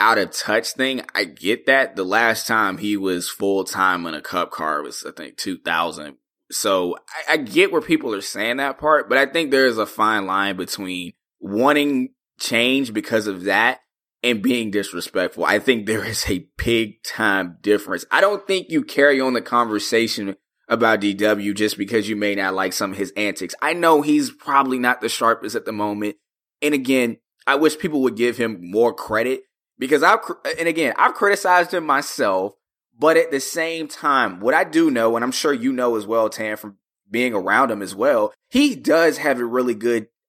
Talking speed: 200 wpm